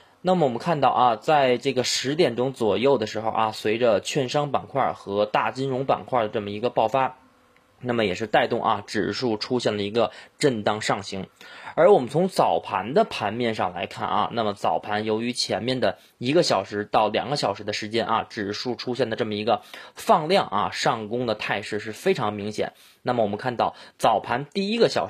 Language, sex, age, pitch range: Chinese, male, 20-39, 105-145 Hz